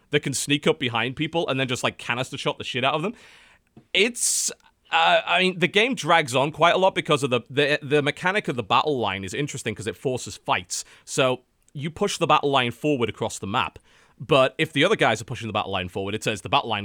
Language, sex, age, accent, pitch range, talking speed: English, male, 30-49, British, 105-145 Hz, 245 wpm